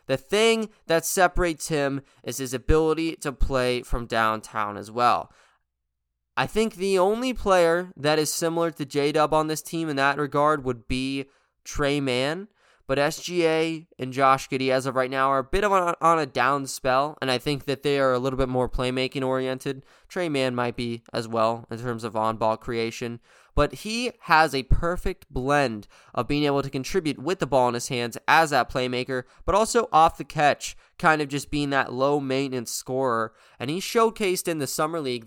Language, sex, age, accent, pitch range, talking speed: English, male, 20-39, American, 125-160 Hz, 190 wpm